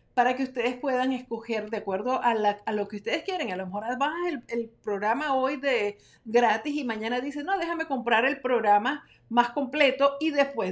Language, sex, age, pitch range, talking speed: Spanish, female, 50-69, 205-250 Hz, 200 wpm